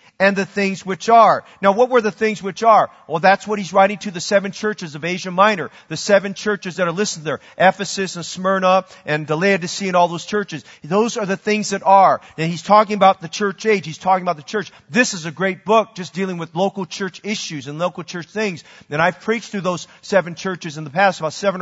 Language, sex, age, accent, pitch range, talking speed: English, male, 40-59, American, 180-215 Hz, 240 wpm